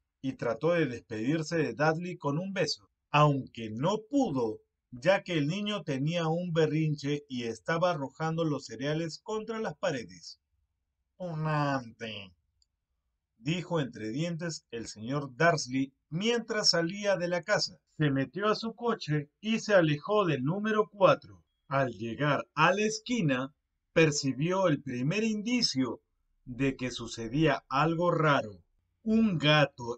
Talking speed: 130 wpm